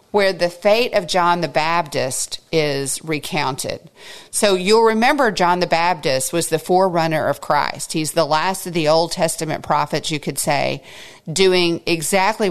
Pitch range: 155-185 Hz